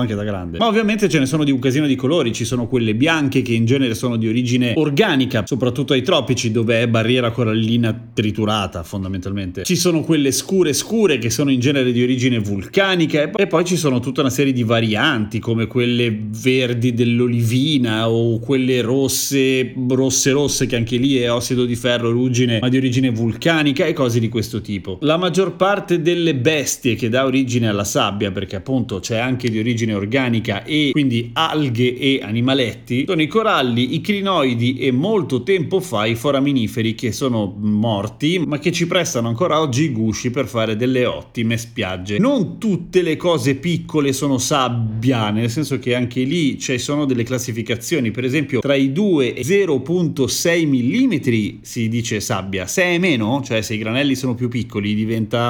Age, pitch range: 30-49, 115-145 Hz